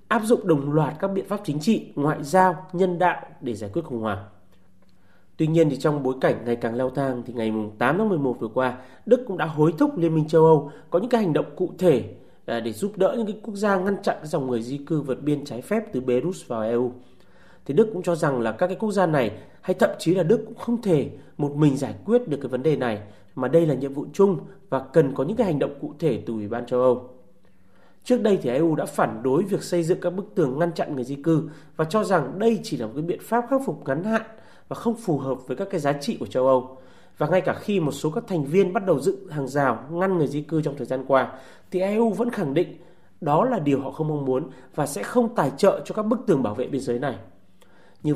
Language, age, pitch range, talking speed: Vietnamese, 30-49, 130-190 Hz, 265 wpm